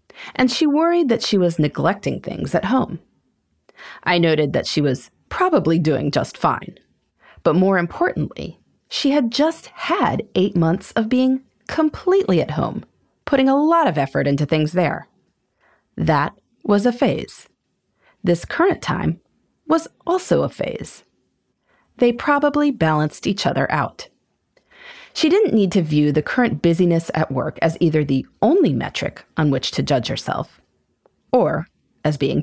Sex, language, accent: female, English, American